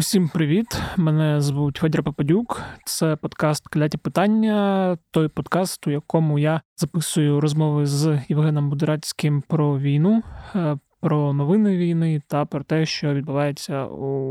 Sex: male